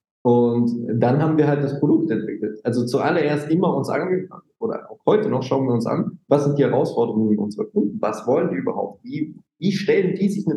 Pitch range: 115-150 Hz